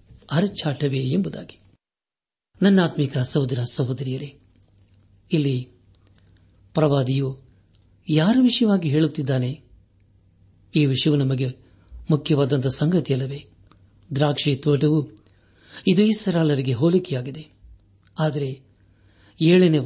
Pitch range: 100-155 Hz